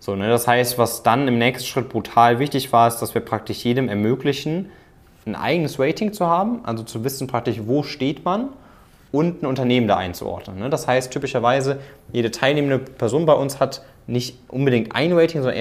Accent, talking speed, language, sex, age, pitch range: German, 180 wpm, German, male, 20-39, 110-135 Hz